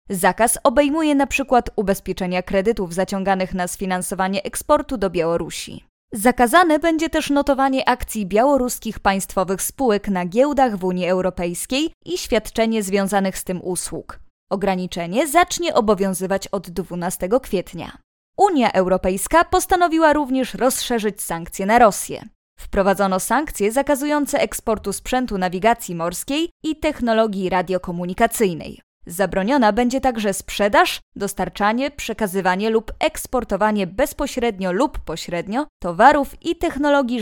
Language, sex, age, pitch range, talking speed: Polish, female, 20-39, 190-275 Hz, 110 wpm